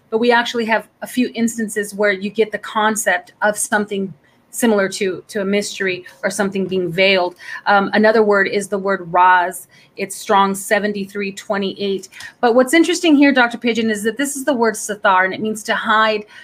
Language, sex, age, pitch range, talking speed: English, female, 30-49, 195-225 Hz, 185 wpm